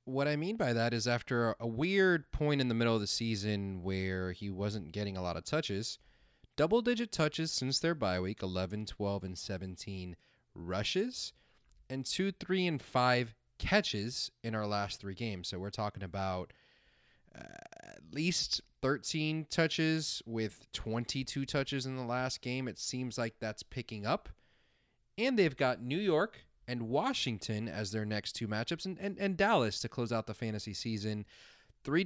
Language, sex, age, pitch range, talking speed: English, male, 30-49, 110-150 Hz, 170 wpm